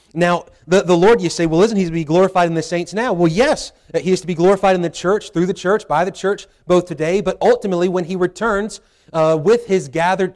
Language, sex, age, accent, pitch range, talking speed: English, male, 30-49, American, 160-185 Hz, 250 wpm